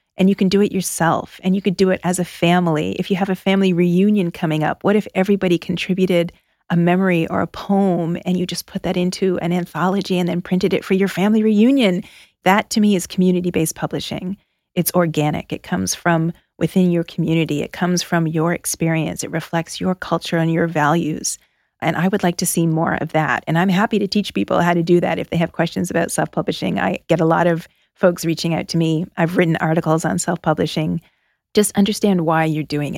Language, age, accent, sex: English, 30-49, American, female